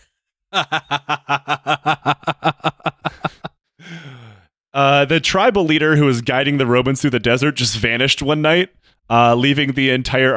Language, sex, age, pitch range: English, male, 20-39, 115-175 Hz